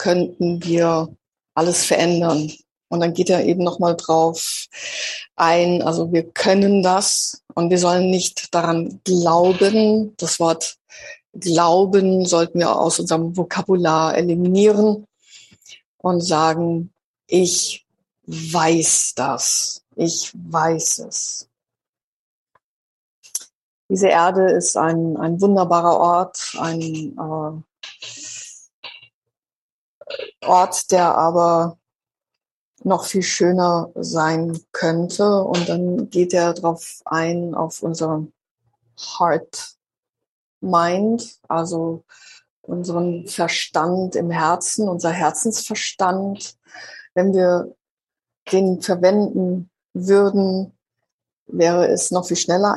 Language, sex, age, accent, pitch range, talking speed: English, female, 50-69, German, 165-185 Hz, 95 wpm